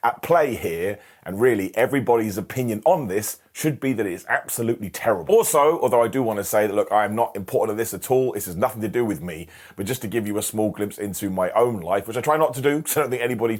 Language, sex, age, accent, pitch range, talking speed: English, male, 30-49, British, 95-130 Hz, 275 wpm